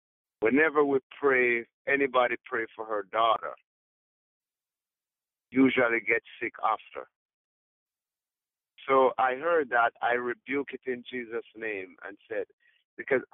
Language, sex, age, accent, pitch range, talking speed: English, male, 60-79, American, 115-145 Hz, 110 wpm